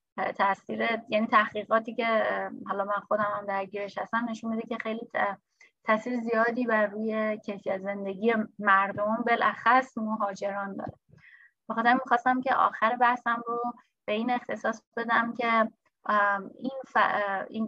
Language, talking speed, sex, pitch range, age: Persian, 130 wpm, female, 200-235 Hz, 20-39